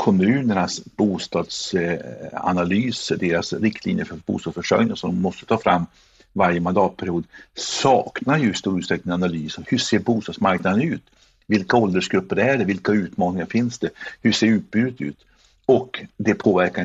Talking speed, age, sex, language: 130 wpm, 50-69, male, Swedish